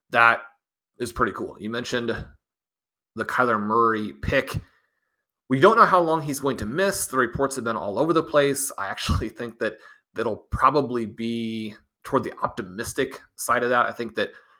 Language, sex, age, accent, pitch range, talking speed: English, male, 30-49, American, 110-130 Hz, 180 wpm